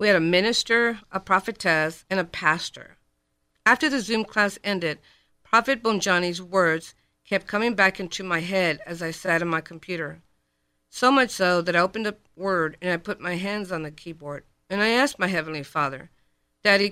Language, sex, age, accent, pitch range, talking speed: English, female, 50-69, American, 160-210 Hz, 185 wpm